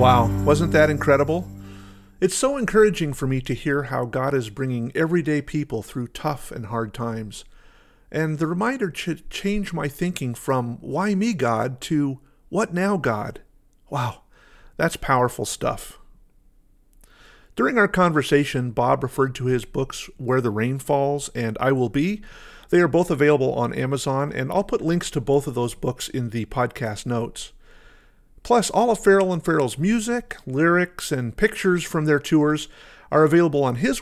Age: 50-69